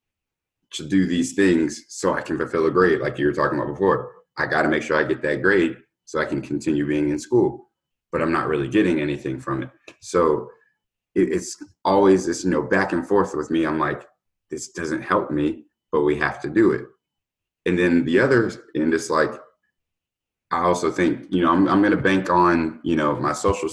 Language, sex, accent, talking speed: English, male, American, 210 wpm